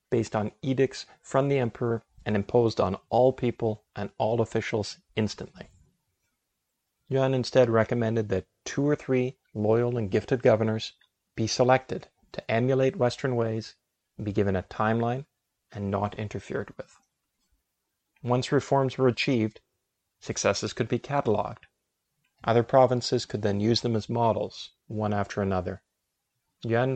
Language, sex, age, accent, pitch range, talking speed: English, male, 40-59, American, 105-125 Hz, 135 wpm